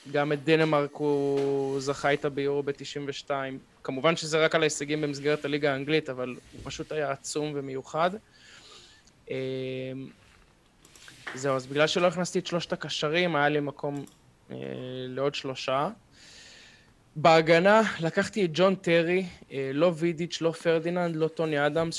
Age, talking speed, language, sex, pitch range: 20-39, 130 wpm, Hebrew, male, 135-160 Hz